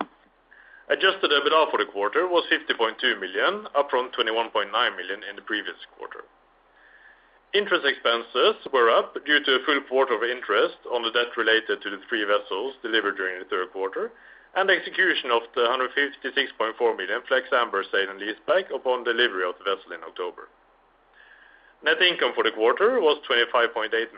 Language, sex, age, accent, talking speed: English, male, 30-49, Norwegian, 160 wpm